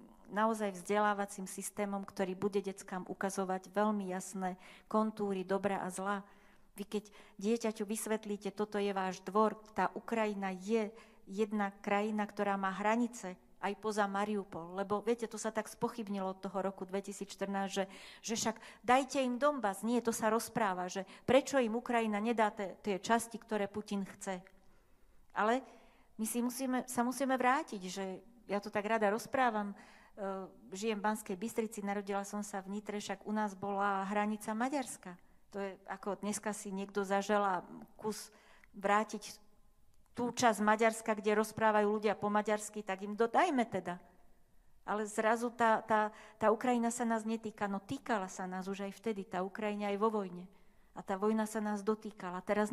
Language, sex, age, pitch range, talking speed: Slovak, female, 40-59, 195-220 Hz, 160 wpm